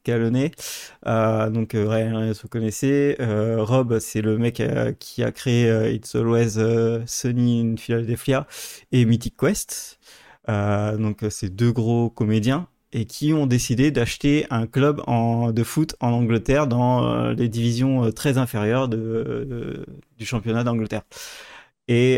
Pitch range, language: 110-125 Hz, French